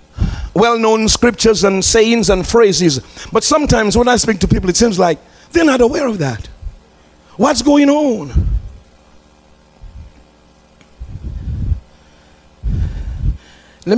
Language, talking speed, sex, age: English, 105 wpm, male, 50-69